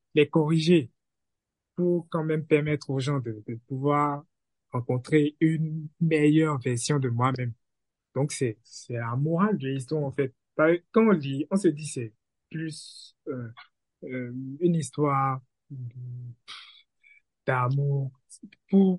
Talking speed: 125 wpm